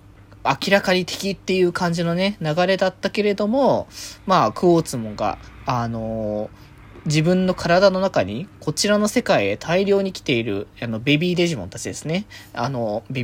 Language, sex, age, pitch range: Japanese, male, 20-39, 115-185 Hz